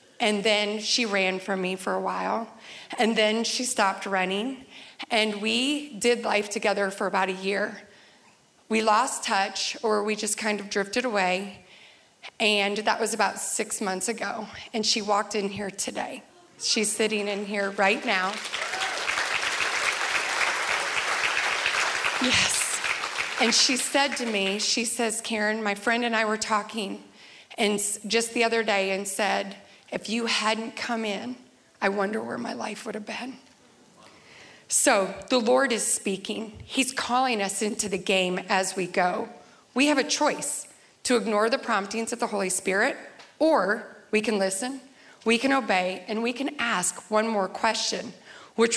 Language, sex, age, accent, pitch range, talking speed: English, female, 30-49, American, 200-235 Hz, 155 wpm